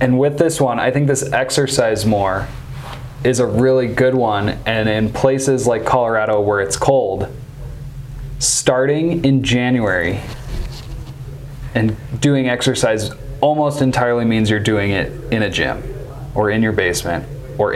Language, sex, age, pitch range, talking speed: English, male, 20-39, 110-135 Hz, 140 wpm